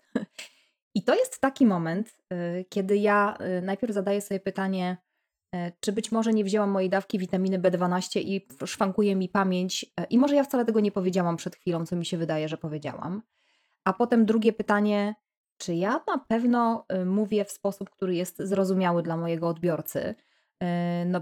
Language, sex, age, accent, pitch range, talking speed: Polish, female, 20-39, native, 180-215 Hz, 160 wpm